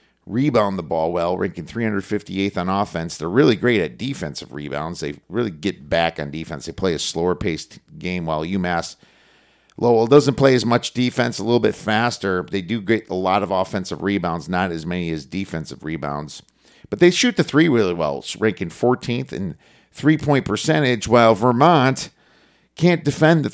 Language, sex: English, male